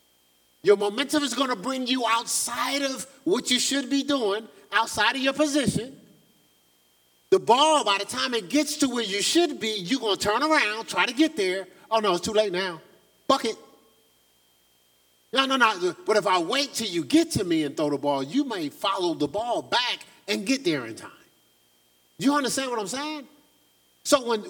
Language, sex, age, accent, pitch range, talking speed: English, male, 30-49, American, 215-310 Hz, 195 wpm